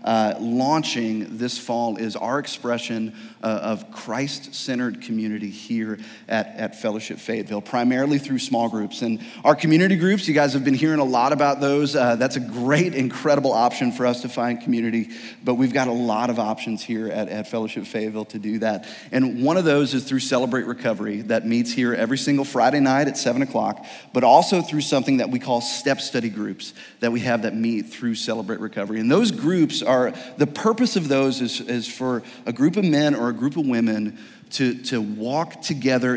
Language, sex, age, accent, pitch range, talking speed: English, male, 30-49, American, 110-140 Hz, 195 wpm